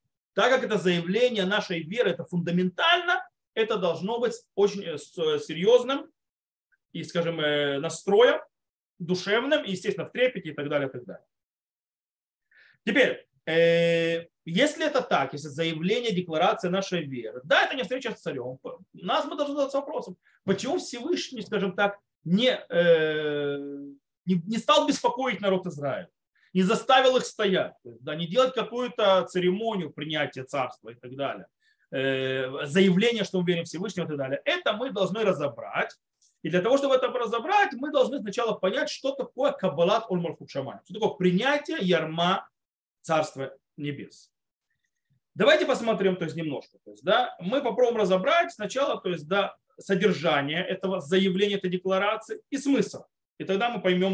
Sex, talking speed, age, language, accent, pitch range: male, 135 wpm, 30-49, Russian, native, 165-250 Hz